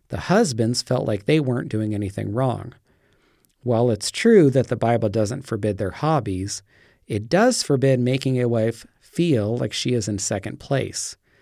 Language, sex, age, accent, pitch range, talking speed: English, male, 40-59, American, 110-135 Hz, 170 wpm